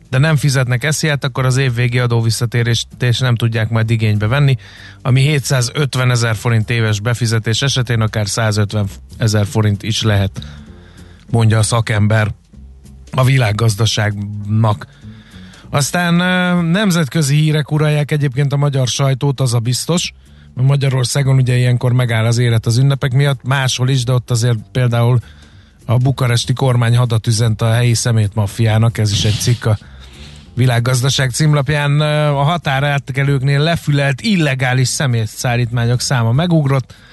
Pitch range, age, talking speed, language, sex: 115-140 Hz, 30-49, 130 wpm, Hungarian, male